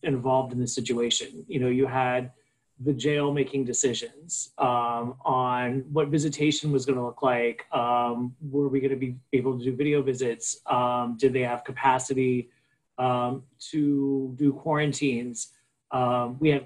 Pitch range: 125-145 Hz